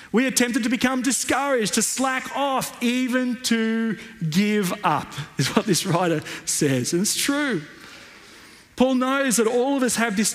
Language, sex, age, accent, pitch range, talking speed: English, male, 40-59, Australian, 195-240 Hz, 170 wpm